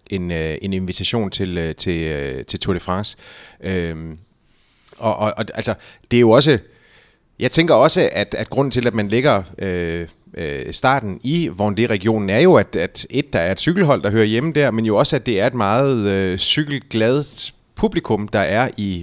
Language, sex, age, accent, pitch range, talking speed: Danish, male, 30-49, native, 95-115 Hz, 190 wpm